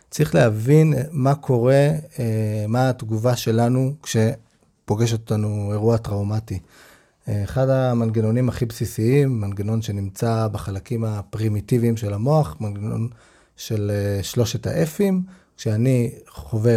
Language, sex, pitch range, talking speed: Hebrew, male, 110-135 Hz, 95 wpm